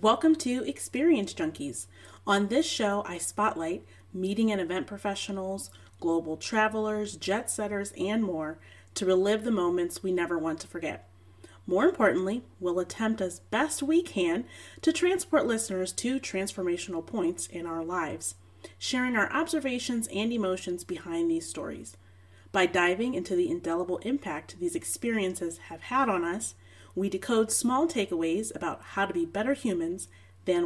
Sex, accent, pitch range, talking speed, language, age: female, American, 170-230 Hz, 150 wpm, English, 30-49